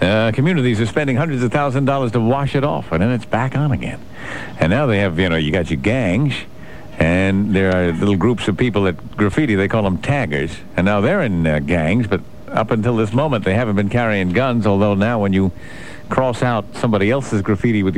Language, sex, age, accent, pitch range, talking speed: English, male, 60-79, American, 105-135 Hz, 225 wpm